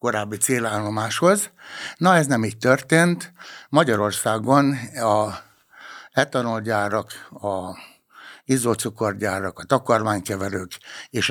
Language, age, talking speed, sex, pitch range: Hungarian, 60-79, 80 wpm, male, 100-125 Hz